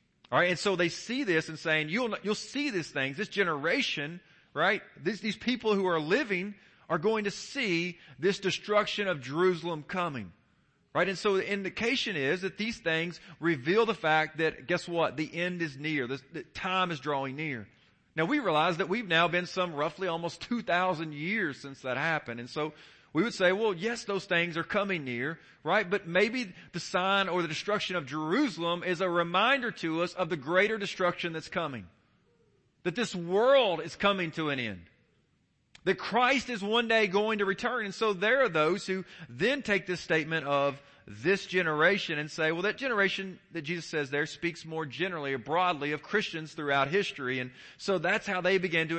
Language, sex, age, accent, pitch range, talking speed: English, male, 40-59, American, 155-195 Hz, 195 wpm